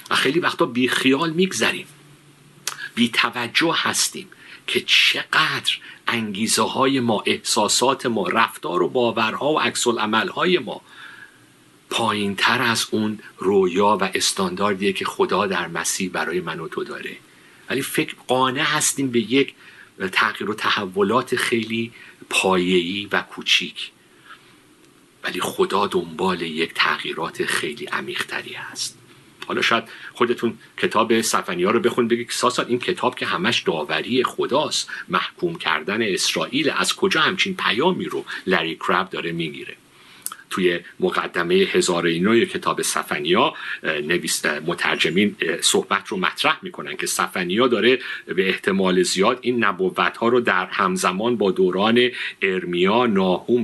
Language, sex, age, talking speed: Persian, male, 50-69, 125 wpm